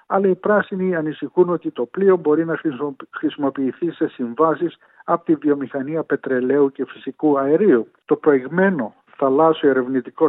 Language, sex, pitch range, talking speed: Greek, male, 140-170 Hz, 135 wpm